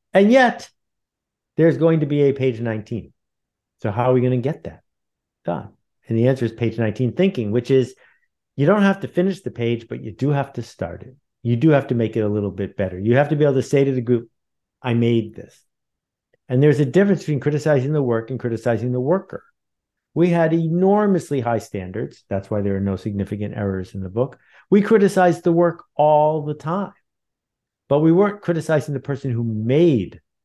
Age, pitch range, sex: 50-69, 115-150 Hz, male